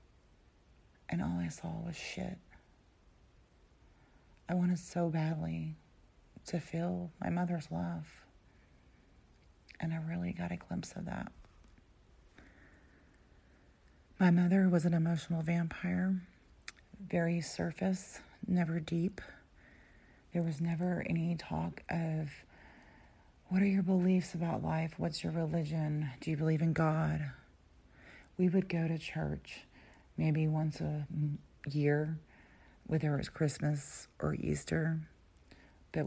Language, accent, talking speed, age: English, American, 115 wpm, 40-59